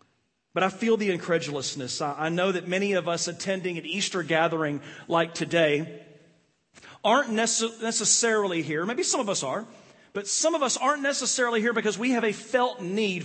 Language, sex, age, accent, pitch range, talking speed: English, male, 40-59, American, 145-225 Hz, 170 wpm